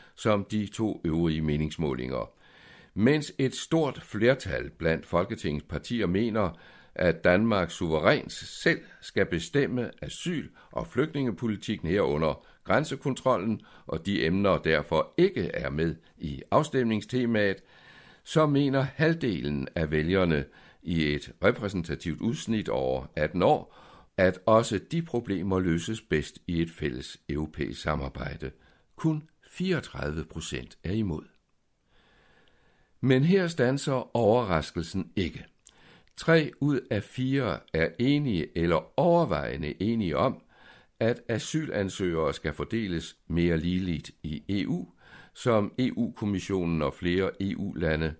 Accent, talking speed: native, 110 wpm